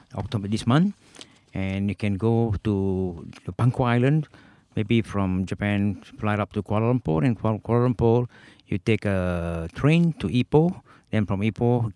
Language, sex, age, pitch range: Japanese, male, 60-79, 105-135 Hz